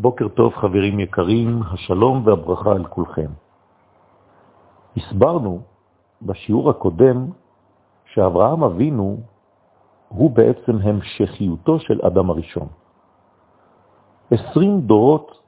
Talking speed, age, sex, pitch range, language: 80 wpm, 50-69, male, 90-120 Hz, French